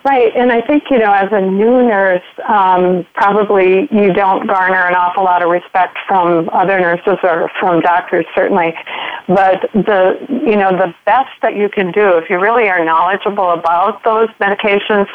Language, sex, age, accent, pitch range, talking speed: English, female, 40-59, American, 180-210 Hz, 180 wpm